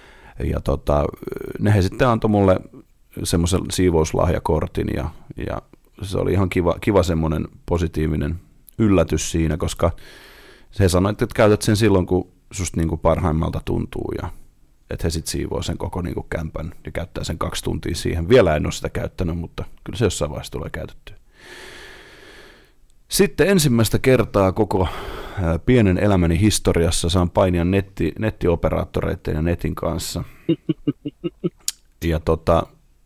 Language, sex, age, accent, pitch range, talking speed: Finnish, male, 30-49, native, 80-100 Hz, 140 wpm